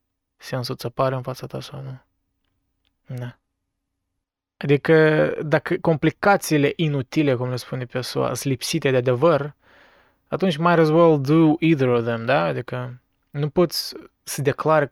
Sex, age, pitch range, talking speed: male, 20-39, 120-145 Hz, 145 wpm